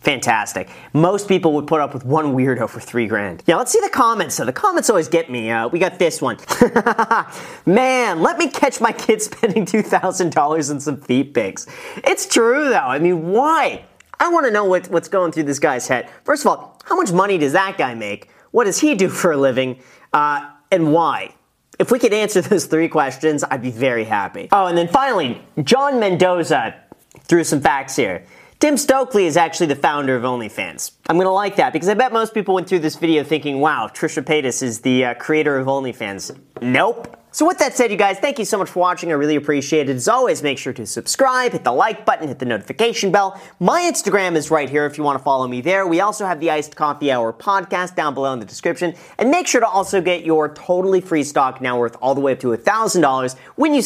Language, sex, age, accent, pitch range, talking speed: English, male, 40-59, American, 145-200 Hz, 225 wpm